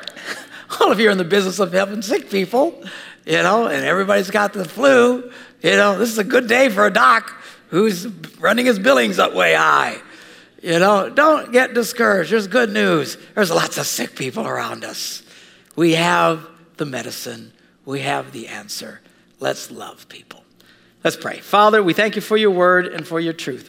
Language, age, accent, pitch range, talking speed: English, 60-79, American, 145-215 Hz, 185 wpm